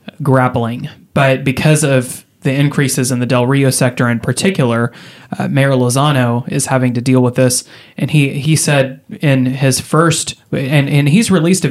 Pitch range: 125-145 Hz